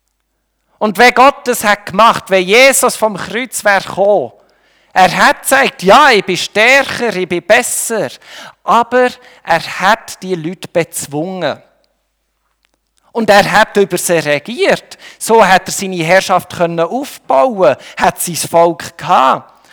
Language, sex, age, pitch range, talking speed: German, male, 50-69, 175-215 Hz, 135 wpm